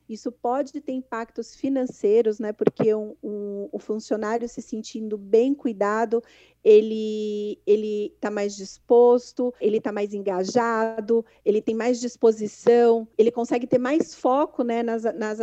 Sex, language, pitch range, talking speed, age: female, Portuguese, 220-245 Hz, 145 wpm, 40-59